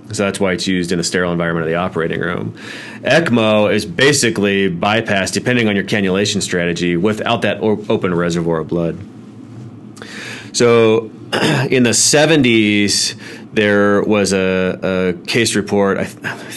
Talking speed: 145 wpm